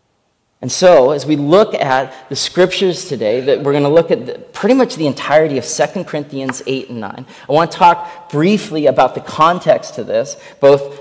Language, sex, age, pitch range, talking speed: English, male, 30-49, 130-175 Hz, 200 wpm